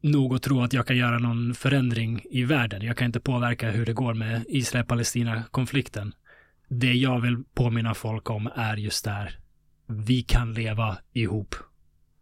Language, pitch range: Swedish, 110-130 Hz